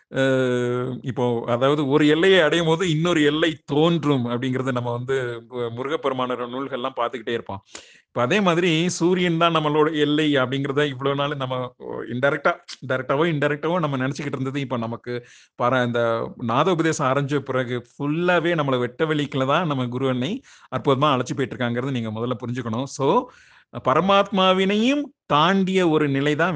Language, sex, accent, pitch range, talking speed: Tamil, male, native, 125-155 Hz, 135 wpm